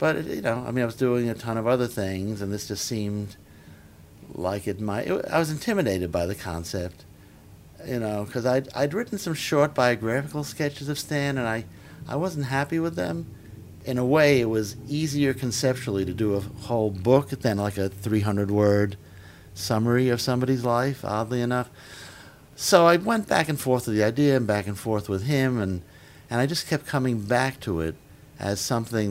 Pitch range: 100-125 Hz